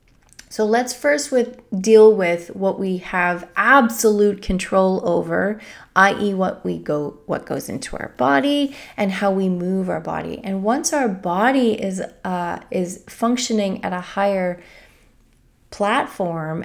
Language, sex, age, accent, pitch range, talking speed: English, female, 30-49, American, 170-230 Hz, 140 wpm